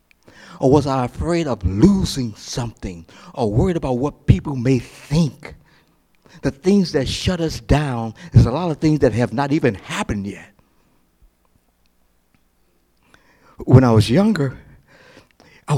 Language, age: English, 60-79